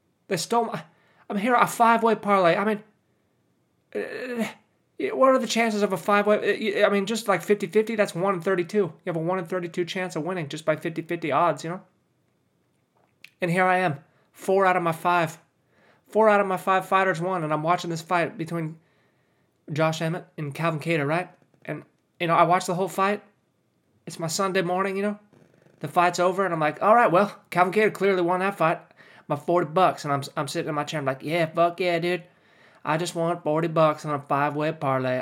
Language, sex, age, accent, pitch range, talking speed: English, male, 20-39, American, 160-205 Hz, 215 wpm